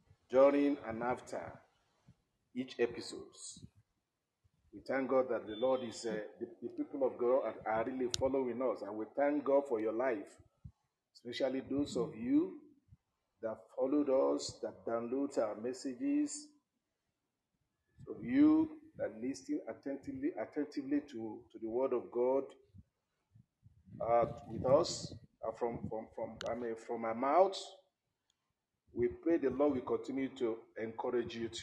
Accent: Nigerian